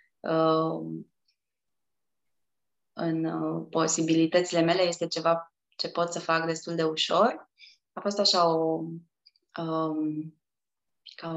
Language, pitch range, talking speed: Romanian, 165-205 Hz, 90 wpm